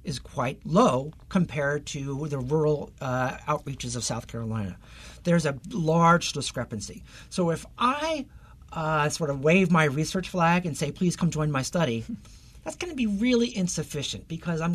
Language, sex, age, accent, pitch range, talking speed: English, male, 50-69, American, 130-175 Hz, 165 wpm